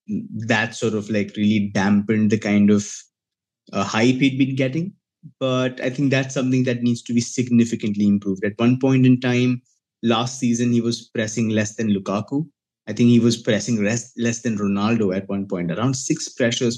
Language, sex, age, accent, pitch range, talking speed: English, male, 20-39, Indian, 110-130 Hz, 190 wpm